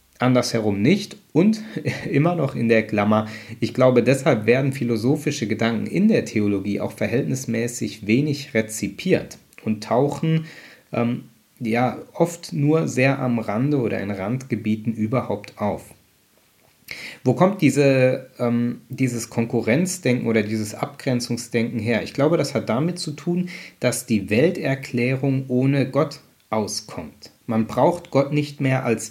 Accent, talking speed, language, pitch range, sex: German, 130 wpm, German, 110-135 Hz, male